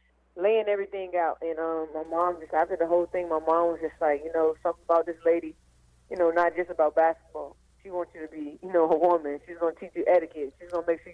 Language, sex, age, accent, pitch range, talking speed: English, female, 20-39, American, 155-180 Hz, 265 wpm